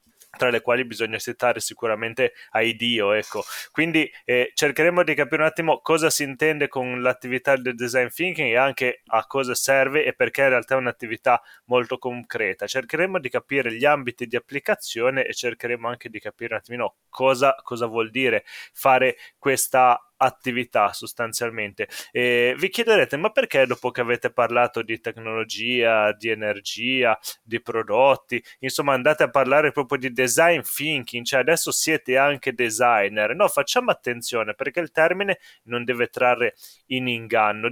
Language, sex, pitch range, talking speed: Italian, male, 120-145 Hz, 155 wpm